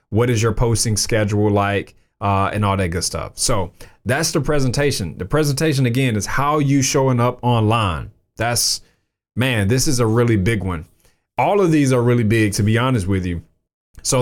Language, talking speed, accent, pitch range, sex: English, 190 wpm, American, 100-125 Hz, male